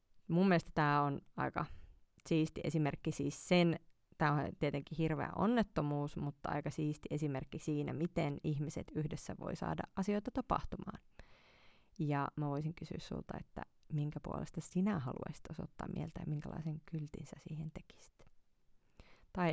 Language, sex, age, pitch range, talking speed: Finnish, female, 30-49, 145-180 Hz, 130 wpm